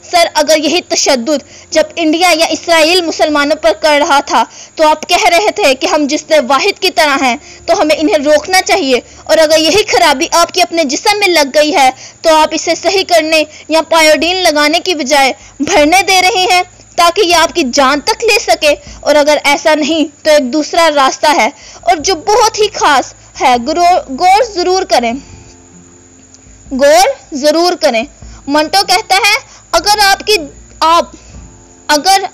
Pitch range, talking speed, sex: 295-350 Hz, 85 wpm, female